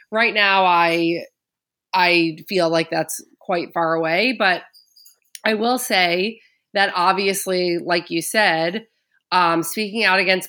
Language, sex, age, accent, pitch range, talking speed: English, female, 30-49, American, 170-200 Hz, 130 wpm